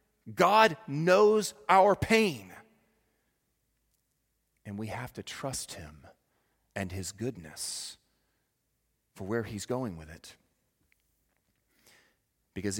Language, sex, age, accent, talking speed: English, male, 40-59, American, 95 wpm